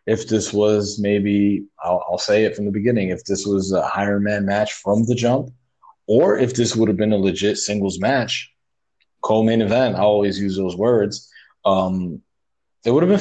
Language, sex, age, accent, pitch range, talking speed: English, male, 20-39, American, 100-120 Hz, 190 wpm